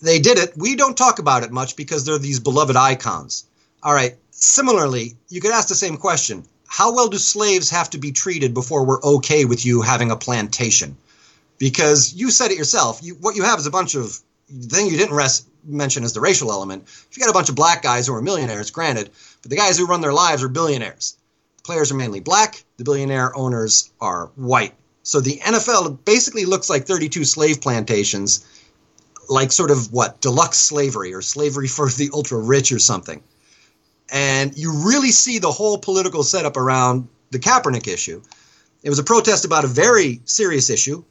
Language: English